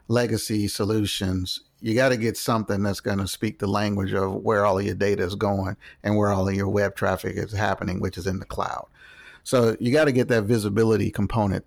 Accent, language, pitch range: American, English, 105-125 Hz